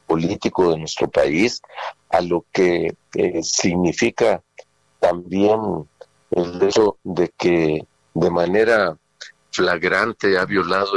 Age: 50-69